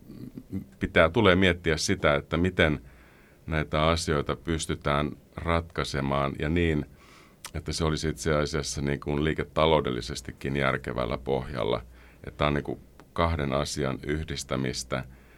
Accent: native